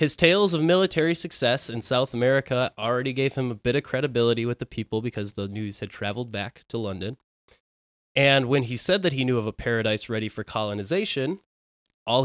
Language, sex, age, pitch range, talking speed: English, male, 20-39, 110-150 Hz, 195 wpm